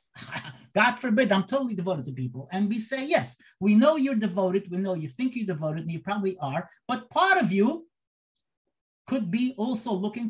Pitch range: 190-260 Hz